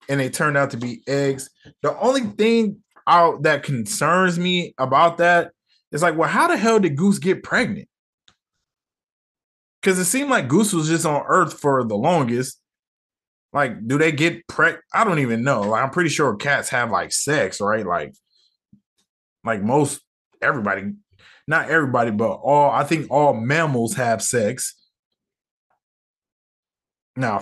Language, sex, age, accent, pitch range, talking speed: English, male, 20-39, American, 135-190 Hz, 155 wpm